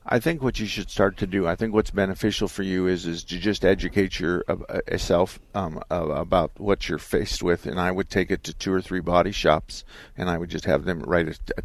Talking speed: 225 wpm